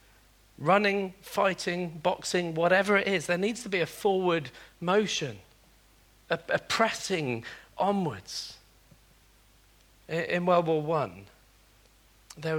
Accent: British